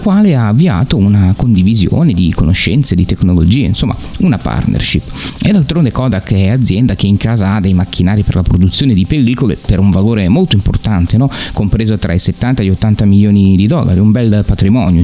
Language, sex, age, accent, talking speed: Italian, male, 30-49, native, 190 wpm